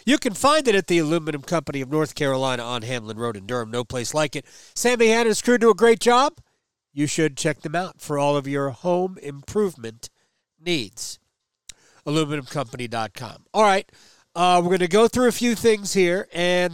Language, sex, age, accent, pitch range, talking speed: English, male, 40-59, American, 155-205 Hz, 190 wpm